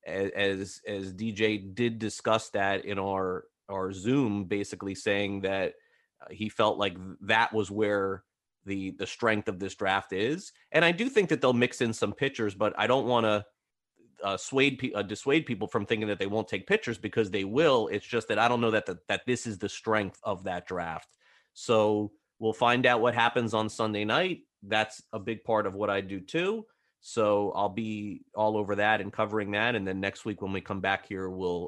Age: 30-49